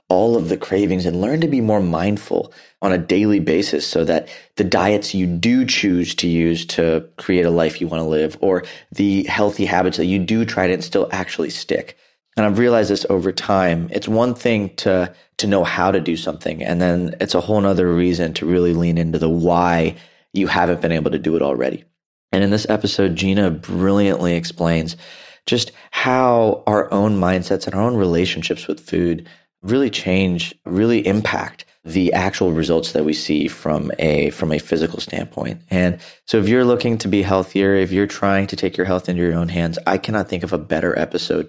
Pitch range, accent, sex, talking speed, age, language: 85-100 Hz, American, male, 200 wpm, 30-49, English